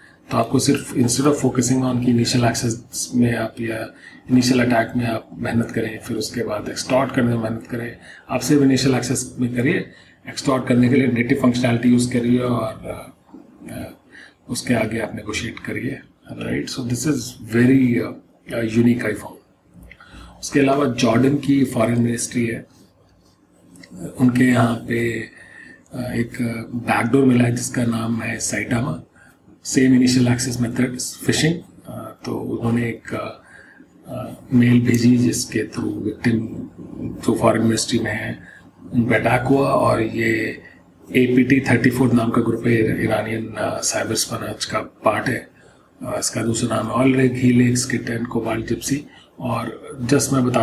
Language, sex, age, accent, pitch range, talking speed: English, male, 40-59, Indian, 115-125 Hz, 100 wpm